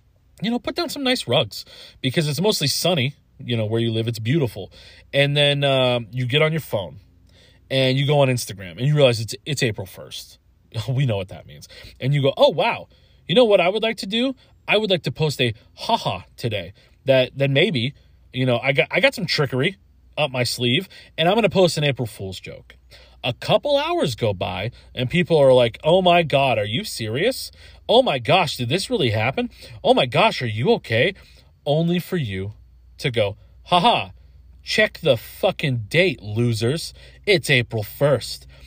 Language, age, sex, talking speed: English, 30-49, male, 200 wpm